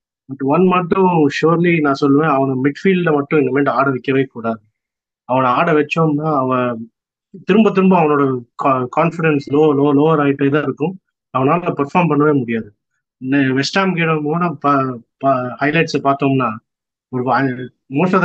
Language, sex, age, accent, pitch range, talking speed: Tamil, male, 20-39, native, 130-160 Hz, 125 wpm